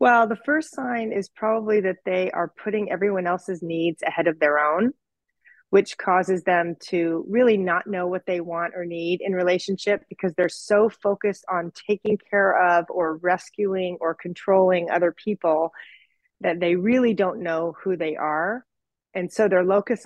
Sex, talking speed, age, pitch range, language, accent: female, 170 wpm, 30-49, 170-195 Hz, English, American